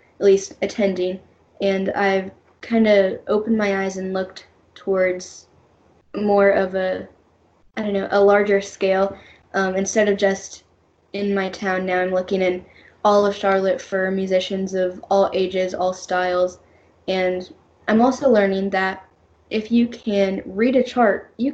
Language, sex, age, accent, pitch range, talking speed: English, female, 10-29, American, 190-215 Hz, 155 wpm